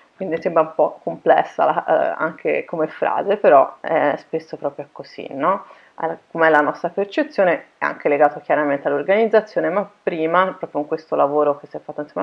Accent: native